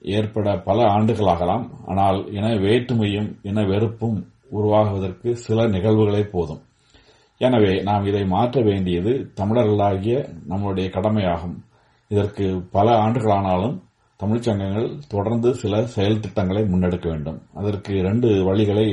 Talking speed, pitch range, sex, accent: 105 wpm, 95-115 Hz, male, native